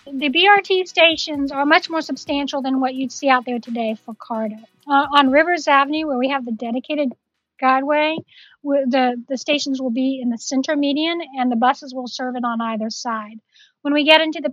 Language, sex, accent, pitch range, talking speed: English, female, American, 250-295 Hz, 200 wpm